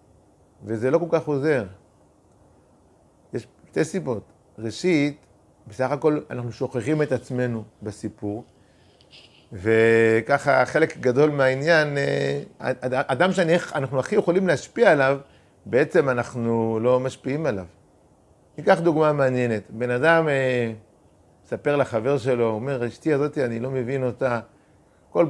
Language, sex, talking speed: Hebrew, male, 110 wpm